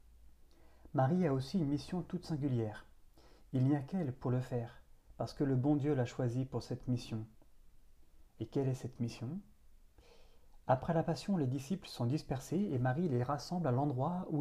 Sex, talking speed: male, 180 wpm